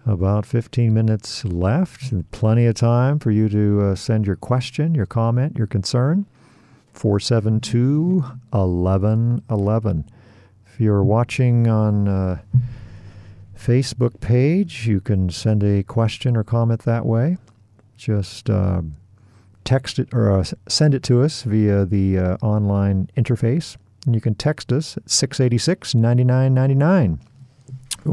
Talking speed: 125 wpm